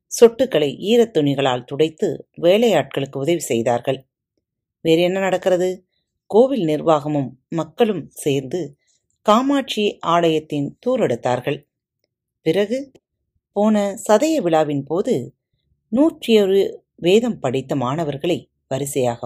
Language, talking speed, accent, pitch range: Tamil, 80 wpm, native, 135-210 Hz